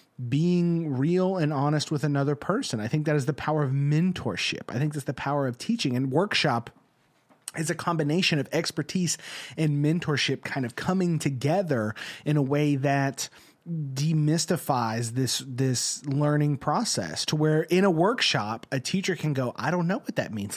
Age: 30-49